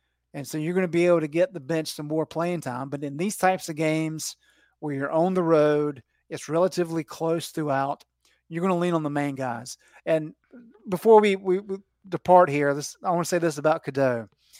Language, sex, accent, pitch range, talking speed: English, male, American, 145-175 Hz, 220 wpm